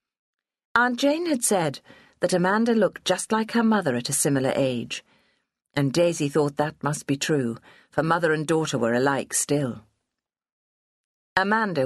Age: 50-69